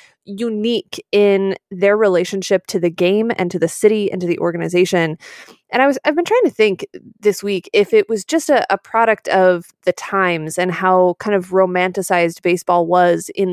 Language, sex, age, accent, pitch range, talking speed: English, female, 20-39, American, 185-240 Hz, 190 wpm